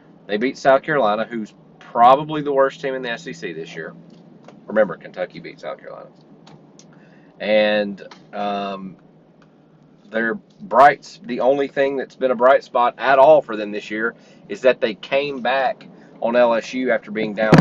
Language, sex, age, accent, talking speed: English, male, 30-49, American, 155 wpm